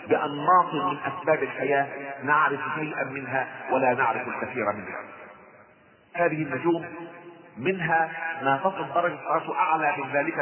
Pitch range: 145-175 Hz